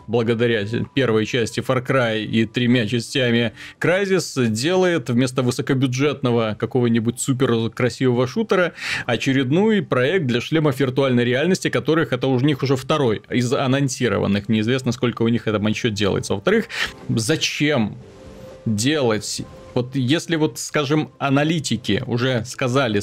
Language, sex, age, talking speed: Russian, male, 30-49, 120 wpm